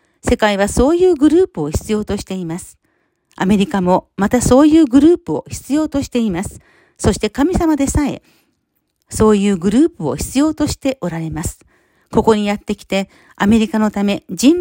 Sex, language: female, Japanese